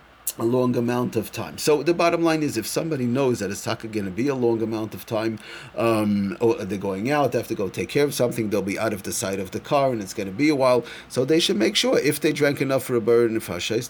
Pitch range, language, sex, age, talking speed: 110-145 Hz, English, male, 30-49, 285 wpm